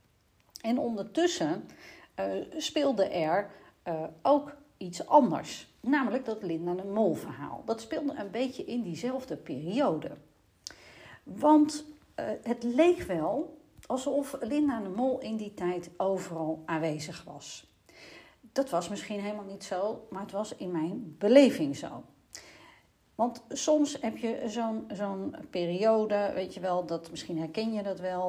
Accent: Dutch